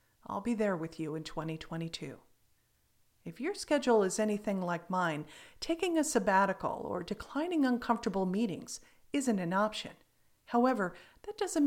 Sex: female